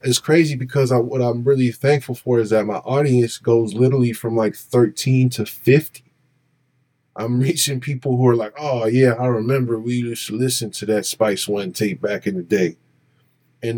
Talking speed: 190 wpm